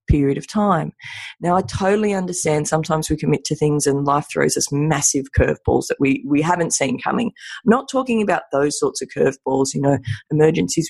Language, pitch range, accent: English, 145-190 Hz, Australian